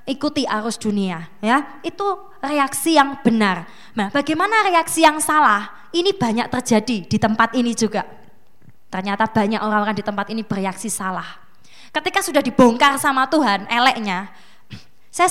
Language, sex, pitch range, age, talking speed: Indonesian, female, 200-250 Hz, 20-39, 135 wpm